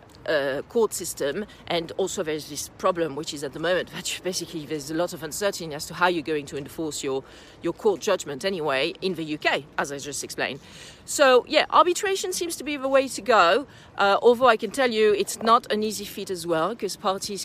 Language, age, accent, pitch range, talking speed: English, 40-59, French, 160-205 Hz, 225 wpm